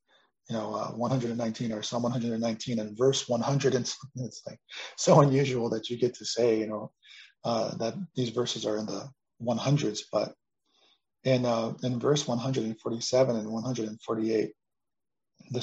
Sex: male